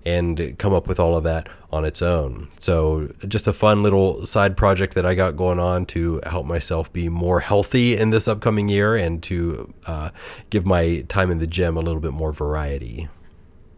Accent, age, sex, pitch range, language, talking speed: American, 30-49, male, 85-105 Hz, English, 200 wpm